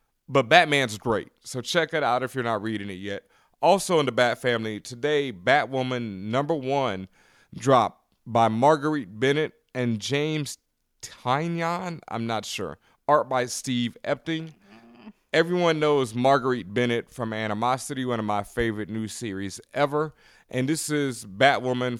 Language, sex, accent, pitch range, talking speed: English, male, American, 115-140 Hz, 145 wpm